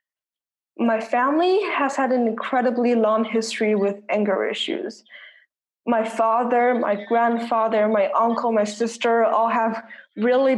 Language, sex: English, female